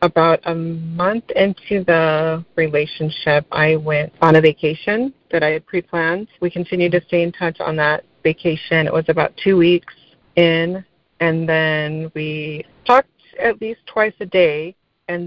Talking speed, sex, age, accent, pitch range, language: 155 wpm, female, 30-49, American, 160-185 Hz, English